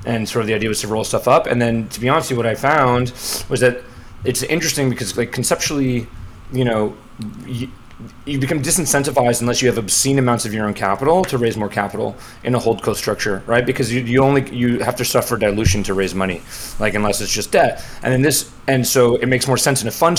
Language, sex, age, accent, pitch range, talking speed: English, male, 30-49, American, 110-135 Hz, 240 wpm